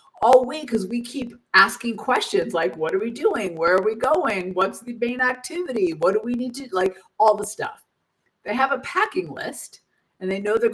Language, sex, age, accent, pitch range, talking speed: English, female, 50-69, American, 195-285 Hz, 210 wpm